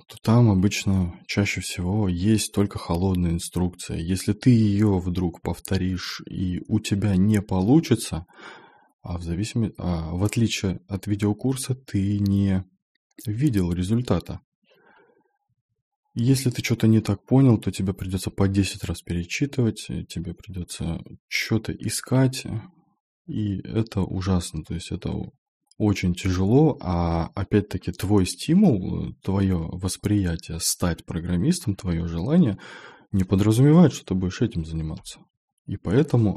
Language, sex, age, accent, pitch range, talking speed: Russian, male, 20-39, native, 90-115 Hz, 120 wpm